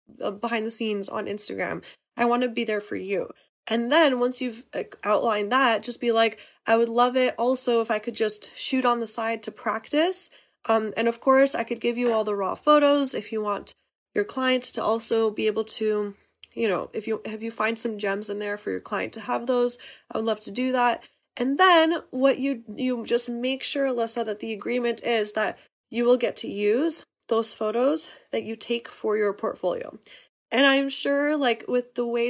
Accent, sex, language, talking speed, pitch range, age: American, female, English, 215 wpm, 220-260 Hz, 20-39